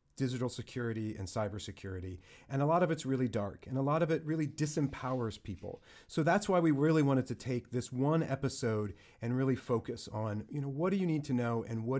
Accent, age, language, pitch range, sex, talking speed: American, 40-59, English, 110-140 Hz, male, 220 wpm